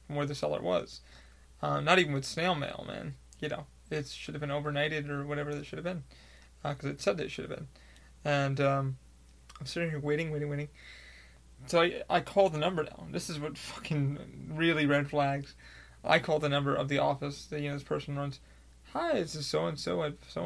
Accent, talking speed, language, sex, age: American, 220 wpm, English, male, 20-39